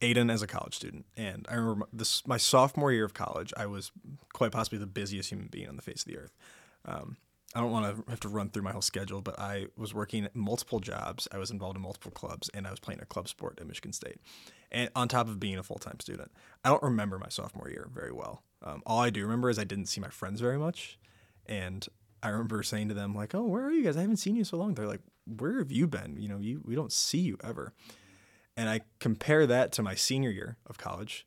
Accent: American